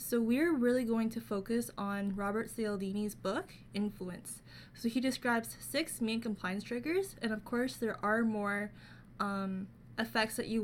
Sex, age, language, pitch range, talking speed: female, 20-39, English, 205-240 Hz, 160 wpm